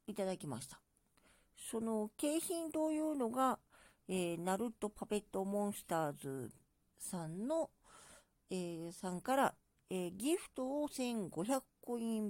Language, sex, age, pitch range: Japanese, female, 50-69, 170-240 Hz